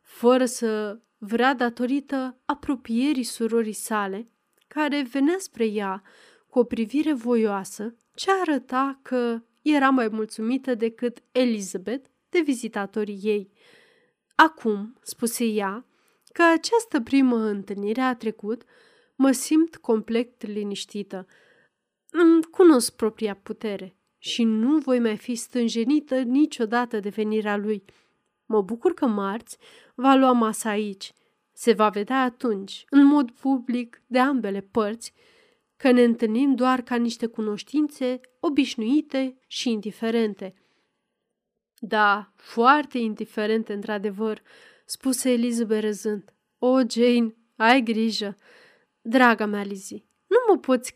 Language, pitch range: Romanian, 215-270 Hz